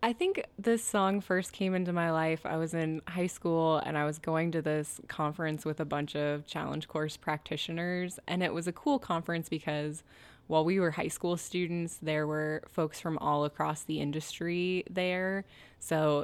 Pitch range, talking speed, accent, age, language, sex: 150-180 Hz, 190 wpm, American, 20-39, English, female